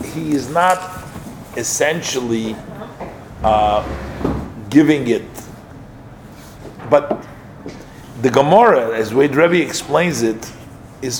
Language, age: English, 50-69